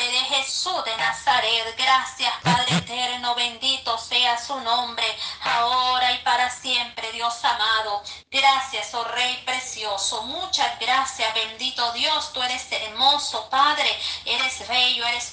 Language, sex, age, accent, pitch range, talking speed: Spanish, female, 30-49, American, 235-275 Hz, 120 wpm